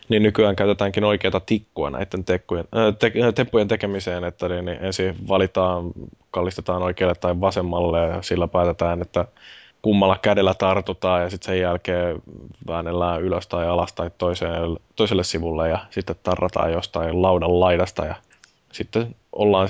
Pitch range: 90-100 Hz